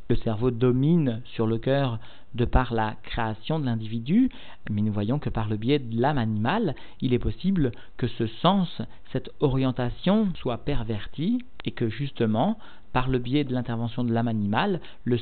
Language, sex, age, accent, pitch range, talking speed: French, male, 50-69, French, 115-140 Hz, 175 wpm